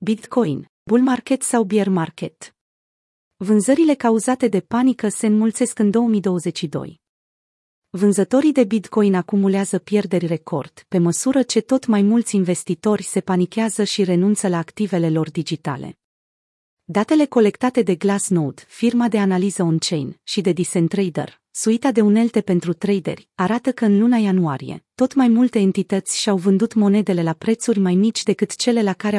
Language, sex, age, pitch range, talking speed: Romanian, female, 30-49, 180-225 Hz, 145 wpm